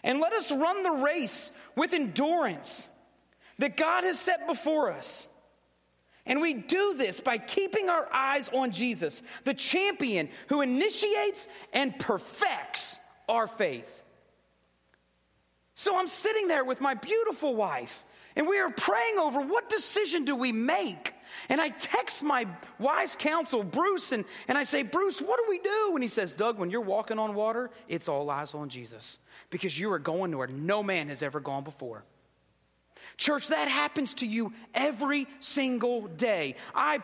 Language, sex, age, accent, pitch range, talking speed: English, male, 40-59, American, 235-345 Hz, 165 wpm